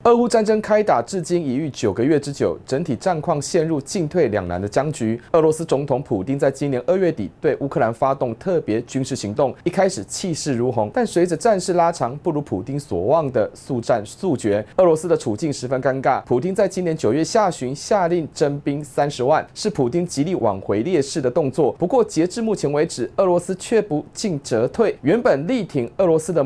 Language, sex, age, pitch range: Chinese, male, 30-49, 135-185 Hz